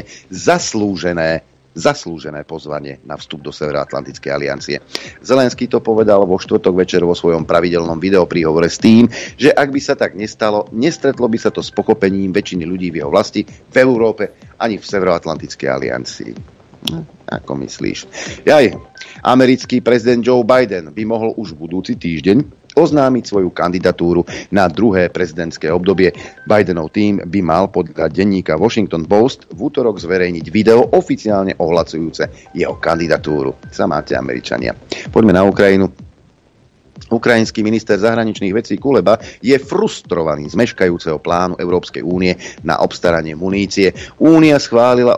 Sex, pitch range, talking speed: male, 85-115 Hz, 135 wpm